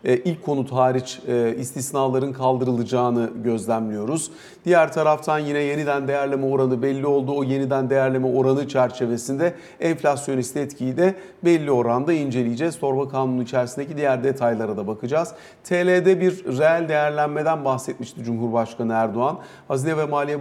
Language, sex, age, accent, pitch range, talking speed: Turkish, male, 50-69, native, 125-155 Hz, 125 wpm